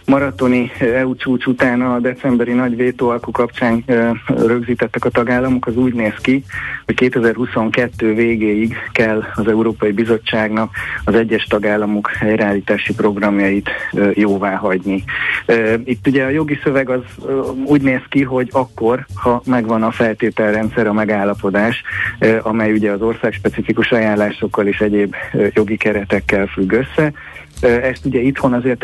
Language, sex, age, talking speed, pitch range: Hungarian, male, 30-49, 130 wpm, 105-125 Hz